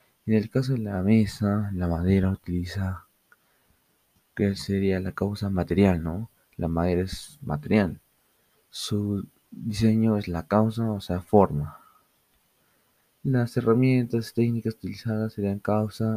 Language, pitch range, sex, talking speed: Spanish, 90-110 Hz, male, 125 wpm